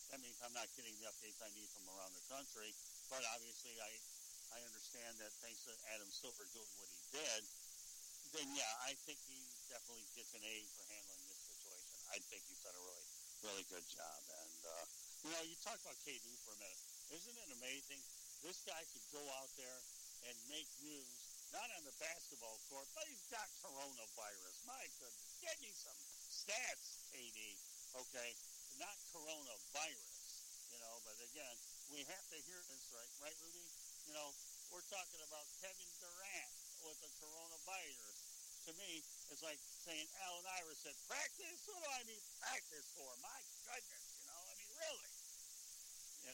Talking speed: 175 wpm